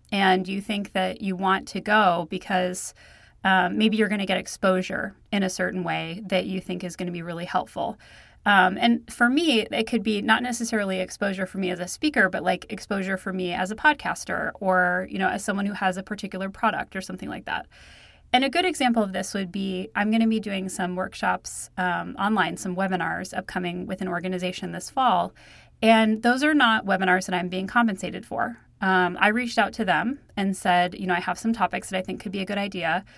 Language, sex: English, female